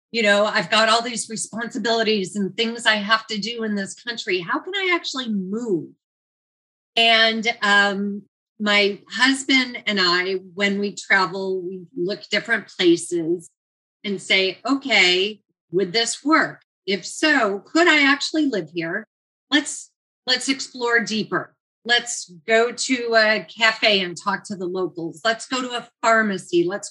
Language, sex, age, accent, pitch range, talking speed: English, female, 40-59, American, 195-250 Hz, 150 wpm